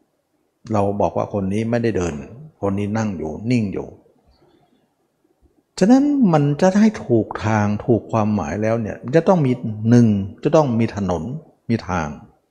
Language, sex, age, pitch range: Thai, male, 60-79, 105-150 Hz